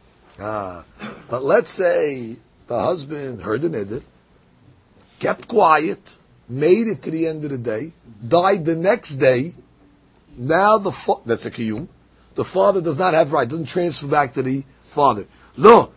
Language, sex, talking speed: English, male, 160 wpm